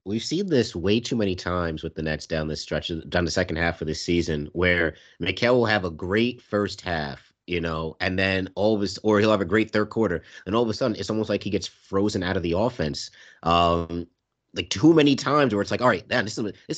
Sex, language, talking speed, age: male, English, 255 wpm, 30-49